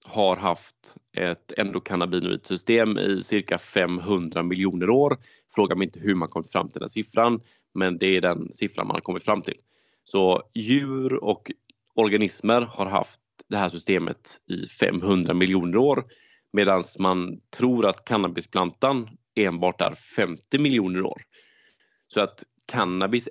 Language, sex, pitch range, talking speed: Swedish, male, 90-120 Hz, 140 wpm